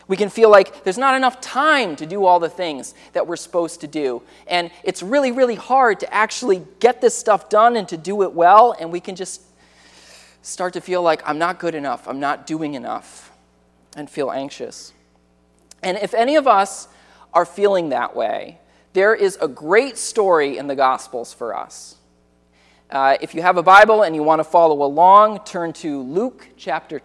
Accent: American